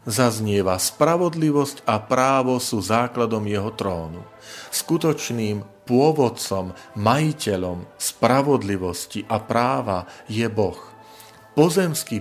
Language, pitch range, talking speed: Slovak, 105-130 Hz, 85 wpm